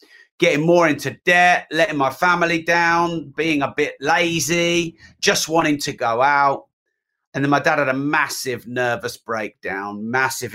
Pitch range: 125-155 Hz